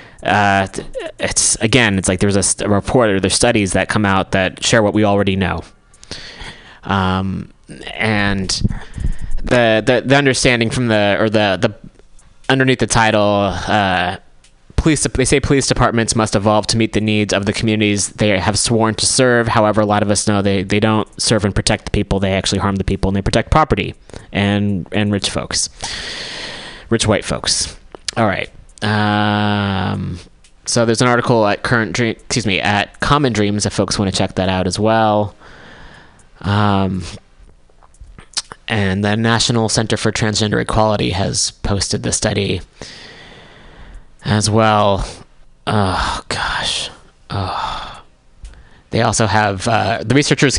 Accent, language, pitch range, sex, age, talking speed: American, English, 95-115 Hz, male, 20-39, 160 wpm